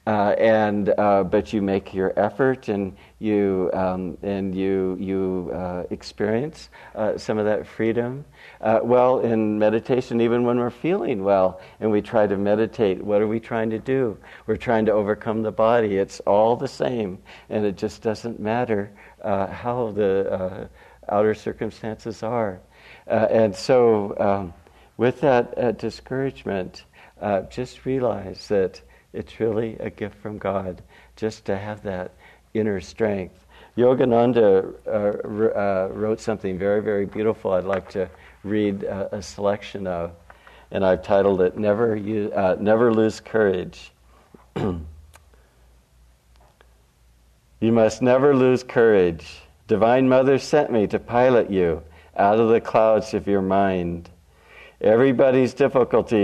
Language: English